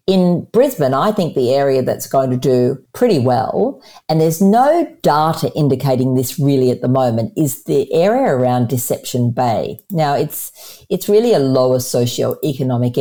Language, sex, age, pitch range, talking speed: English, female, 50-69, 125-165 Hz, 160 wpm